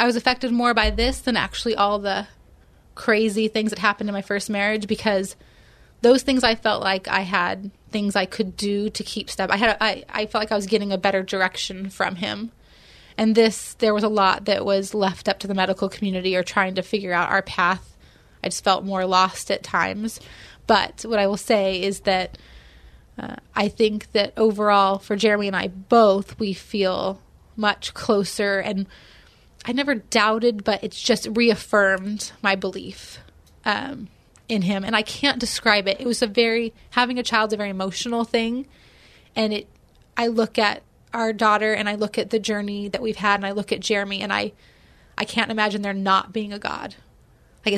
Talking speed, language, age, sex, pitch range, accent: 200 wpm, English, 20-39, female, 195-225 Hz, American